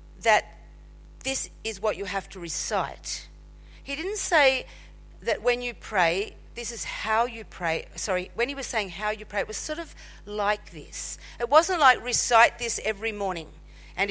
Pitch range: 195-260 Hz